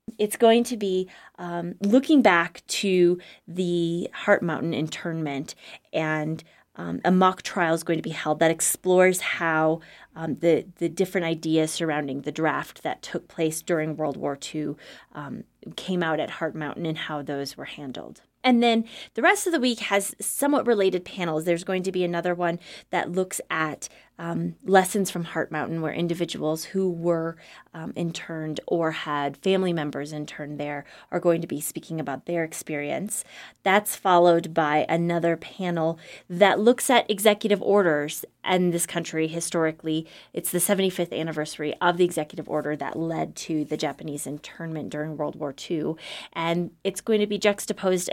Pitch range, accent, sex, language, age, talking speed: 155-185 Hz, American, female, English, 20-39, 165 wpm